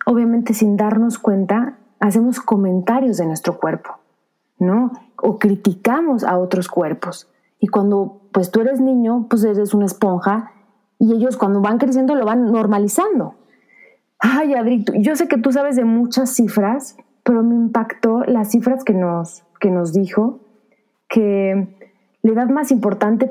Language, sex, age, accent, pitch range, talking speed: Spanish, female, 30-49, Mexican, 205-255 Hz, 150 wpm